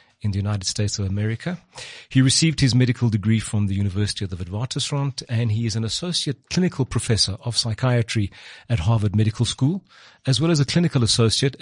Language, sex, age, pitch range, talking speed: English, male, 40-59, 110-135 Hz, 185 wpm